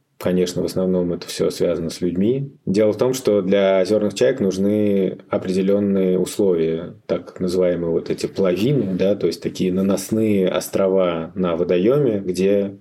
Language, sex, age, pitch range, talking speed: Russian, male, 20-39, 90-100 Hz, 150 wpm